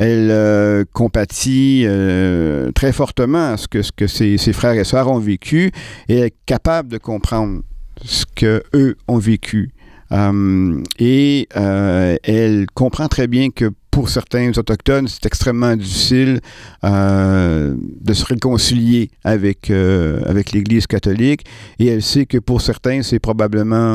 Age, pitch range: 50-69, 105-125 Hz